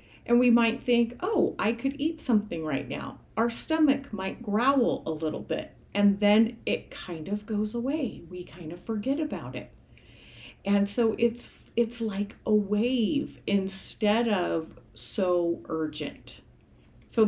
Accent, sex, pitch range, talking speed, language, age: American, female, 190-240 Hz, 150 wpm, English, 40-59